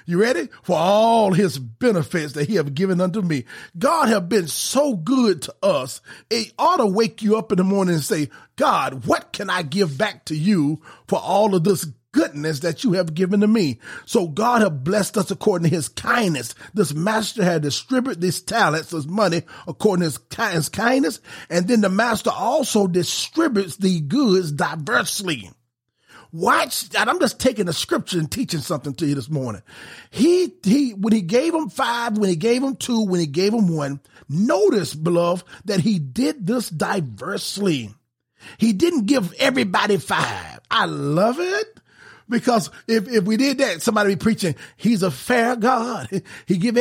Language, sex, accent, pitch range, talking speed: English, male, American, 170-235 Hz, 180 wpm